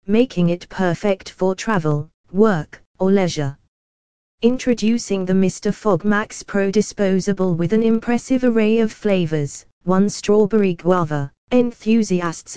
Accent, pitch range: British, 170-210 Hz